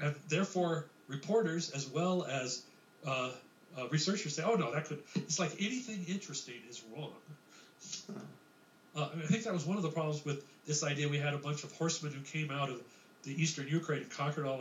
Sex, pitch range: male, 145-185 Hz